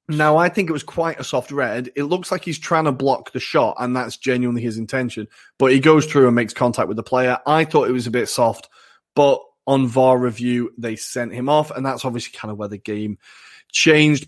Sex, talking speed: male, 240 wpm